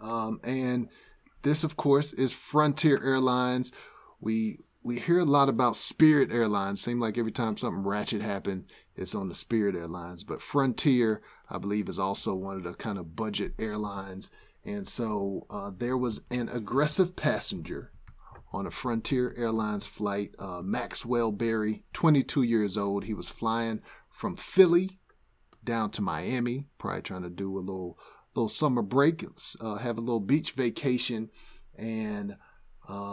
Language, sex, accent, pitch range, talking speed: English, male, American, 105-140 Hz, 155 wpm